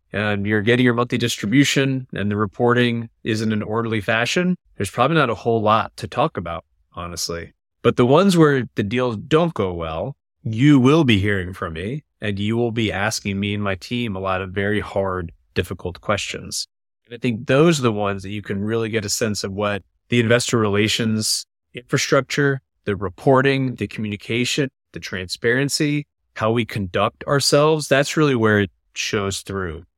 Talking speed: 180 wpm